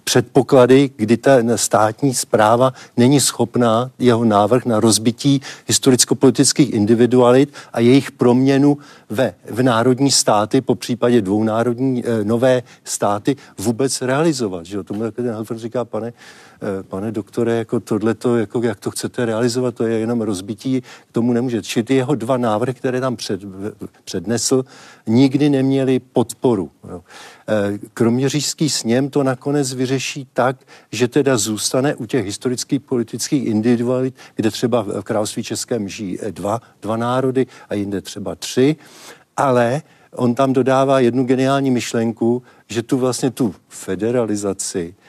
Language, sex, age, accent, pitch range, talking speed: Czech, male, 50-69, native, 115-135 Hz, 140 wpm